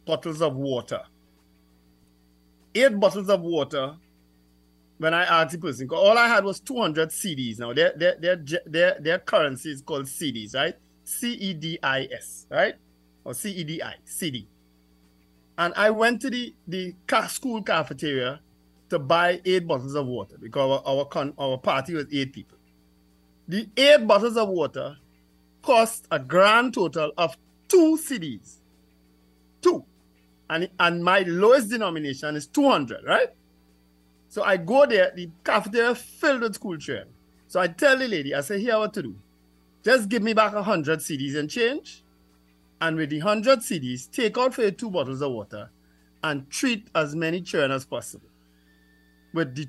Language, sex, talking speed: English, male, 155 wpm